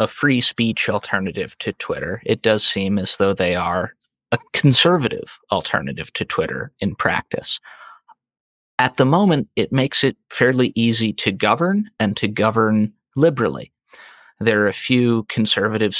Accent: American